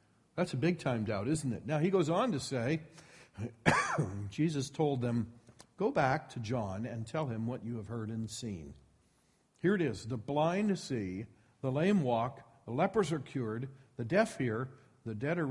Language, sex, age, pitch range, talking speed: English, male, 50-69, 120-165 Hz, 185 wpm